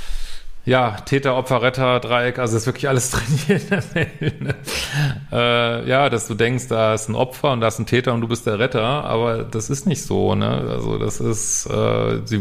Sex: male